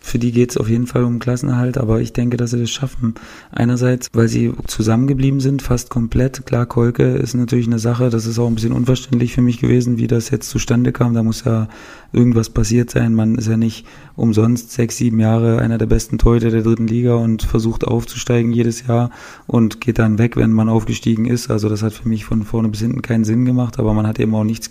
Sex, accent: male, German